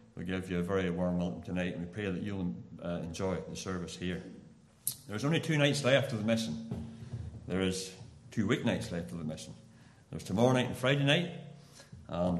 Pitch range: 90-125 Hz